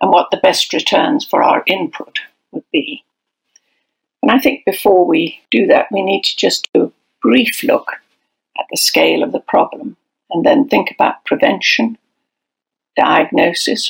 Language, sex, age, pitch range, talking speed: English, female, 60-79, 260-310 Hz, 160 wpm